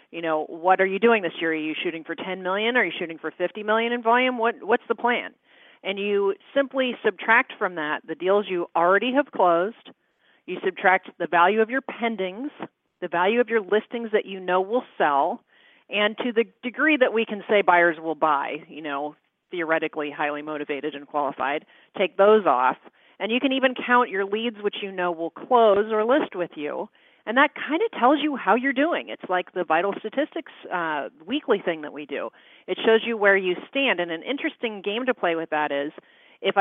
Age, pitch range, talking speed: 40-59, 175-240 Hz, 210 wpm